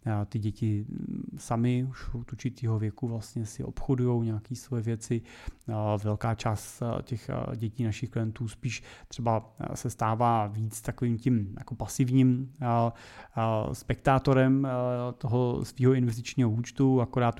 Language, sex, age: Czech, male, 30-49